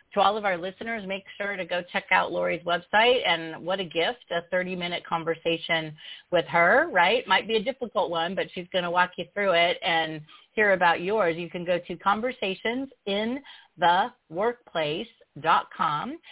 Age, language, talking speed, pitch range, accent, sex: 40-59, English, 165 wpm, 175-215 Hz, American, female